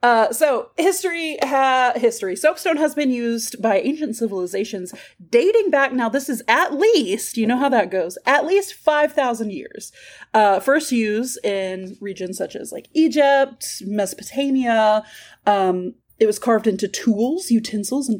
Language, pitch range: English, 205-305 Hz